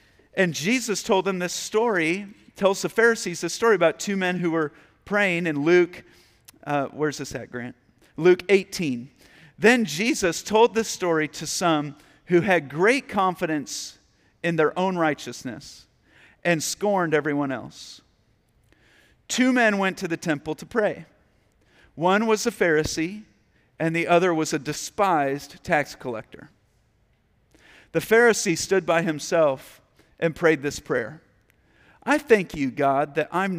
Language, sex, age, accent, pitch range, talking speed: English, male, 50-69, American, 145-180 Hz, 145 wpm